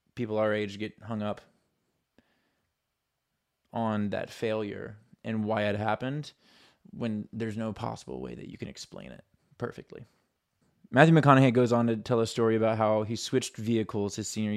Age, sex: 20-39, male